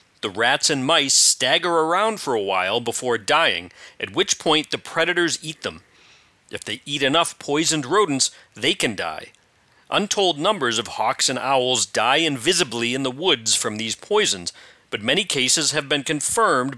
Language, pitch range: English, 125-170 Hz